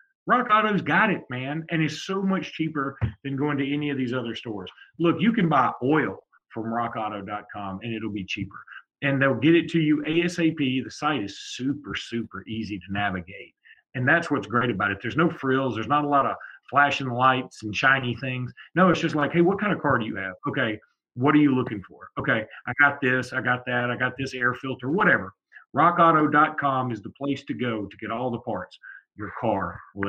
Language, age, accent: English, 40-59, American